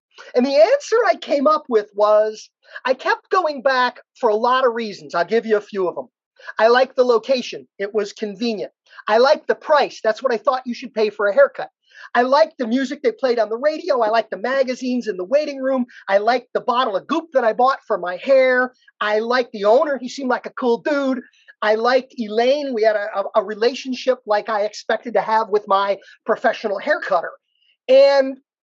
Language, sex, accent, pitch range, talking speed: English, male, American, 225-295 Hz, 215 wpm